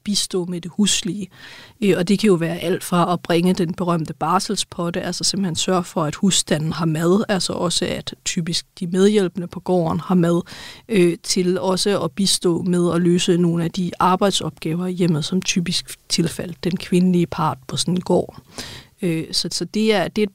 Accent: native